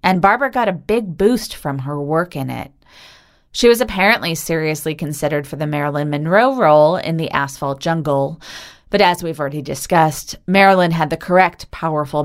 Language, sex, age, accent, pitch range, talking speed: English, female, 30-49, American, 145-185 Hz, 170 wpm